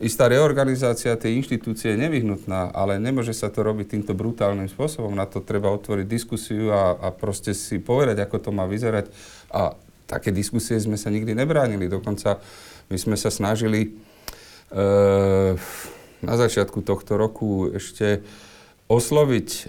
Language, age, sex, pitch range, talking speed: Slovak, 40-59, male, 105-125 Hz, 145 wpm